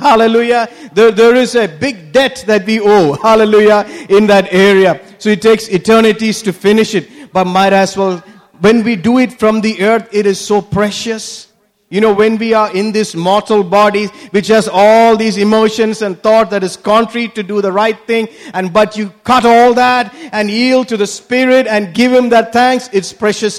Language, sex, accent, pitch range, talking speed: English, male, Indian, 190-225 Hz, 200 wpm